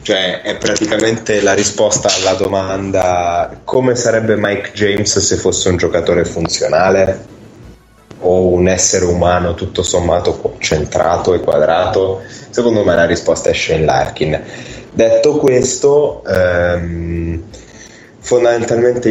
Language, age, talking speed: Italian, 20-39, 115 wpm